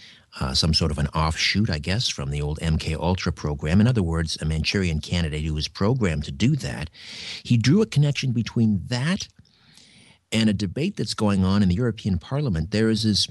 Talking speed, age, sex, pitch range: 205 wpm, 50-69, male, 90-110 Hz